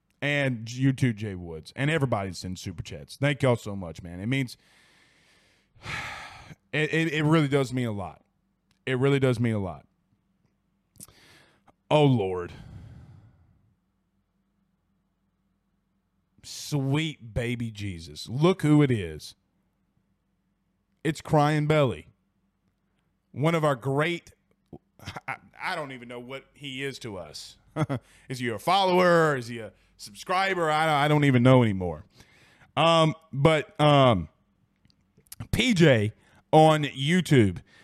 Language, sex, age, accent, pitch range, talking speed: English, male, 30-49, American, 115-160 Hz, 120 wpm